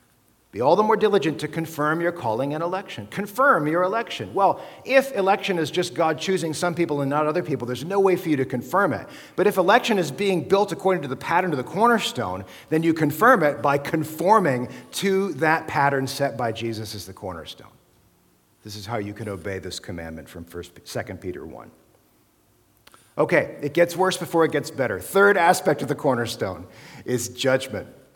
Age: 50-69